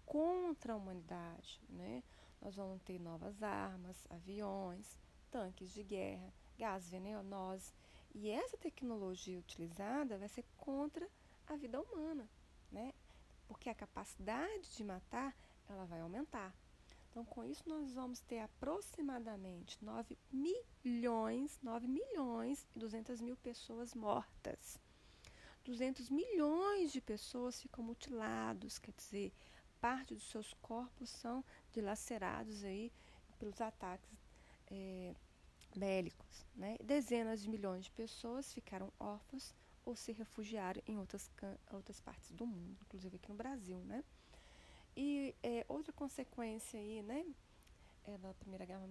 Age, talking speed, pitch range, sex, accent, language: 30-49, 125 wpm, 195-255 Hz, female, Brazilian, Portuguese